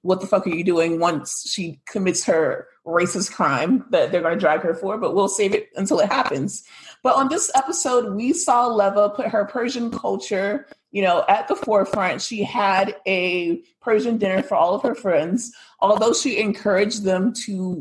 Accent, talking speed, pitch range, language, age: American, 190 wpm, 180-230 Hz, English, 30-49